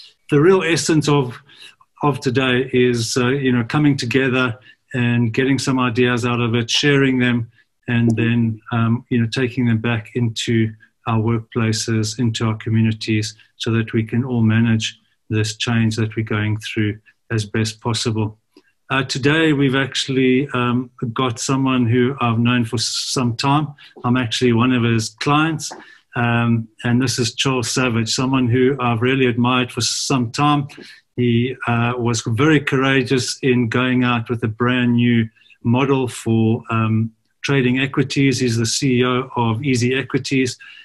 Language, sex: English, male